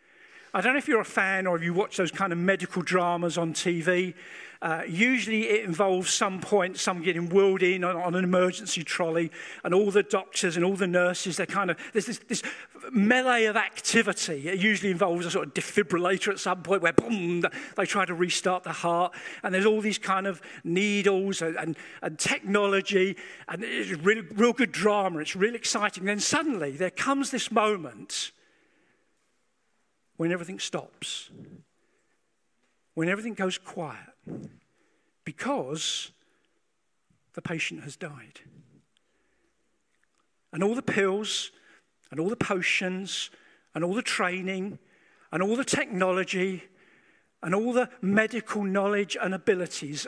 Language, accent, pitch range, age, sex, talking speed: English, British, 180-215 Hz, 50-69, male, 155 wpm